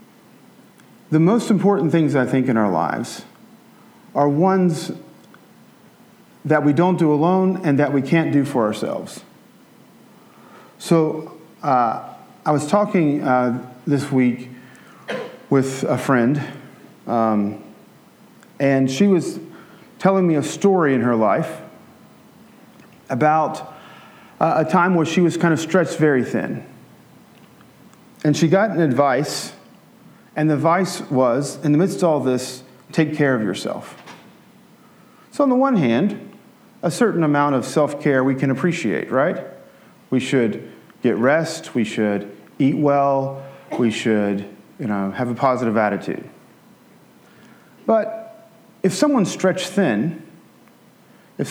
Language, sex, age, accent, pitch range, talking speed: English, male, 40-59, American, 130-185 Hz, 130 wpm